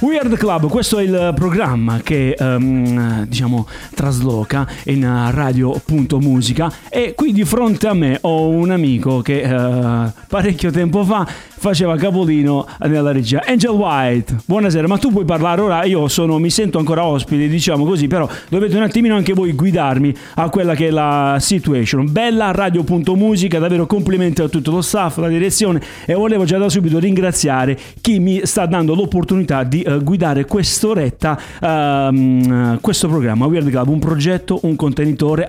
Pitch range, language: 135-190 Hz, Italian